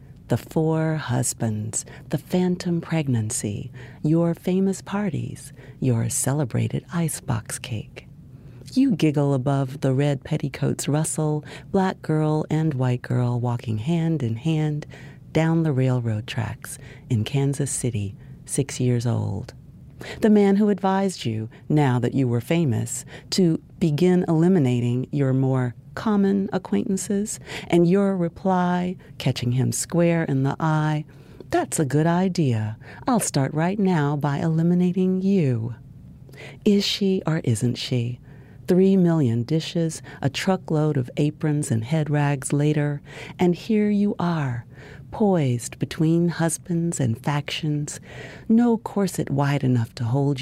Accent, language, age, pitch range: American, English, 40-59, 130-170 Hz